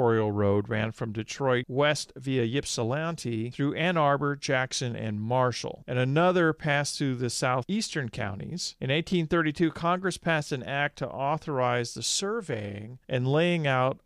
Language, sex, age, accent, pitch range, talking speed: English, male, 40-59, American, 120-160 Hz, 140 wpm